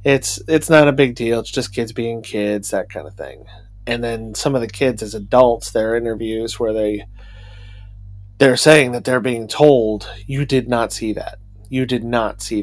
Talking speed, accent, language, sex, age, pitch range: 200 wpm, American, English, male, 30-49, 100-125 Hz